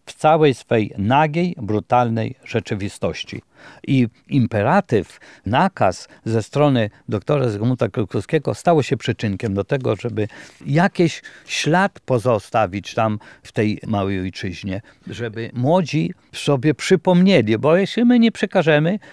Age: 50-69